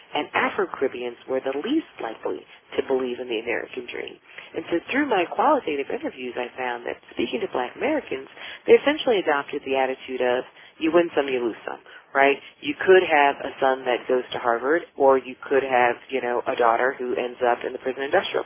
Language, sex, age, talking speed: English, female, 40-59, 200 wpm